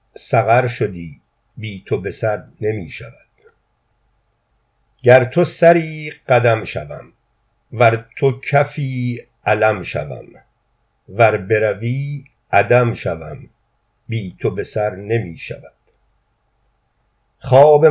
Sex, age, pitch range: male, 50-69, 115-135 Hz